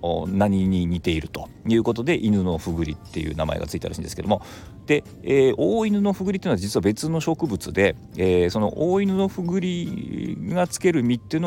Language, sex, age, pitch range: Japanese, male, 40-59, 90-130 Hz